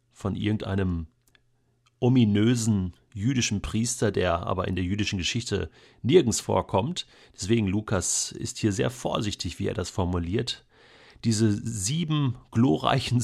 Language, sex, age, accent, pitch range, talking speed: German, male, 40-59, German, 105-135 Hz, 120 wpm